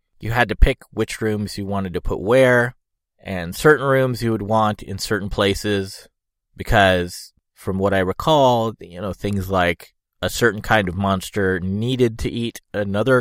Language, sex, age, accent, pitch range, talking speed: English, male, 30-49, American, 95-125 Hz, 175 wpm